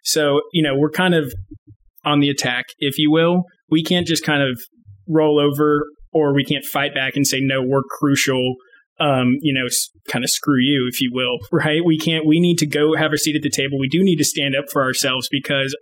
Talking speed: 230 wpm